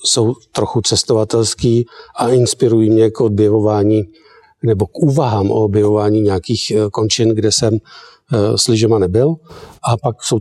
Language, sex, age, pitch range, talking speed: Czech, male, 50-69, 105-120 Hz, 125 wpm